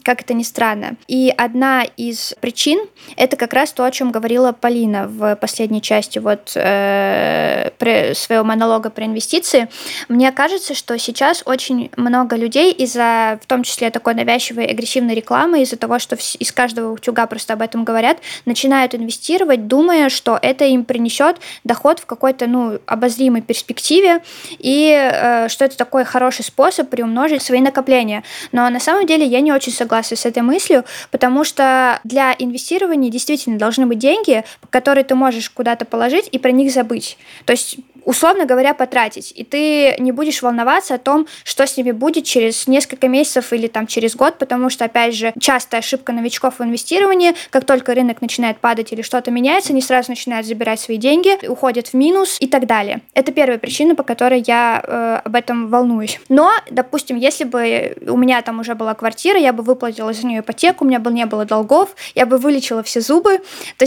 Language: Russian